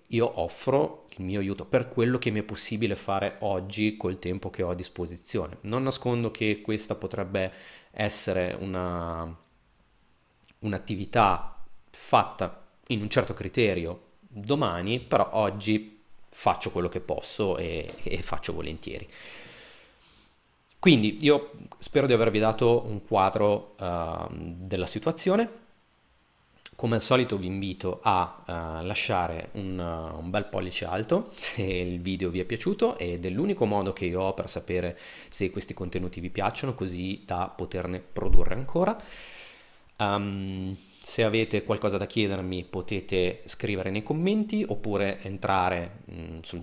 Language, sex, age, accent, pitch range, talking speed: Italian, male, 30-49, native, 90-115 Hz, 130 wpm